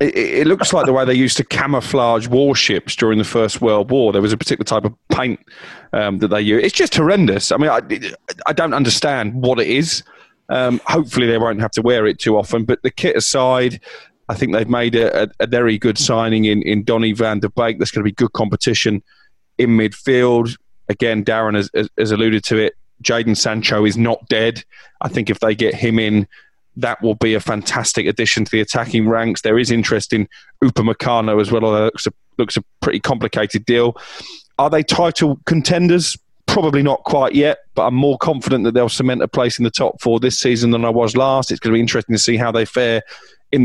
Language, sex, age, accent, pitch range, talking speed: English, male, 20-39, British, 110-125 Hz, 215 wpm